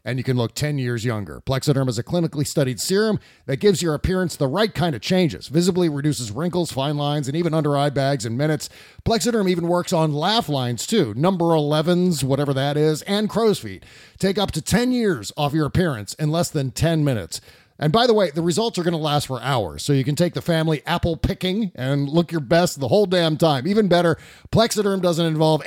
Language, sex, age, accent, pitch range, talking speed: English, male, 40-59, American, 140-180 Hz, 220 wpm